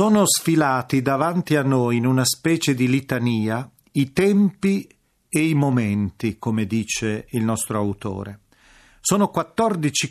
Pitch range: 120-175 Hz